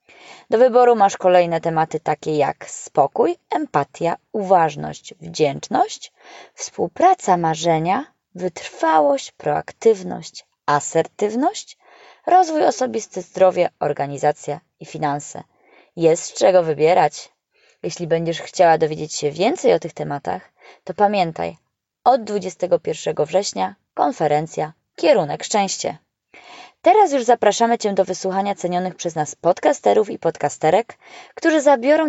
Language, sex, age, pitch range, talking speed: Polish, female, 20-39, 165-240 Hz, 105 wpm